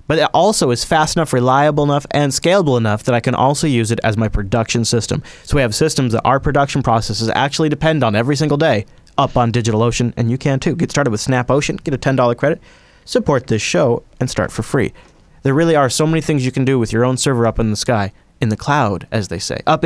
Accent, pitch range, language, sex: American, 115-140 Hz, English, male